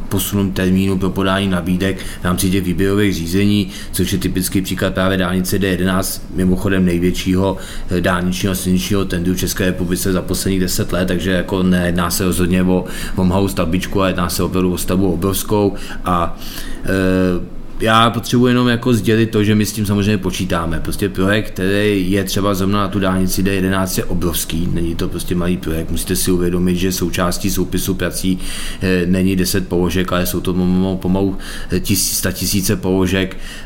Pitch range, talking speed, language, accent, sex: 90-100 Hz, 165 wpm, Czech, native, male